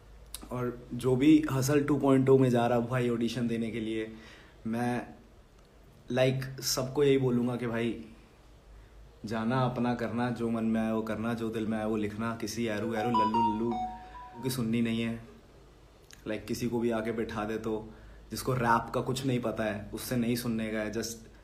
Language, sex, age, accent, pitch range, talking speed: Hindi, male, 30-49, native, 110-135 Hz, 190 wpm